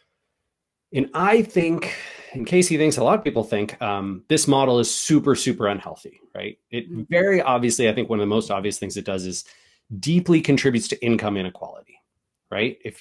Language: English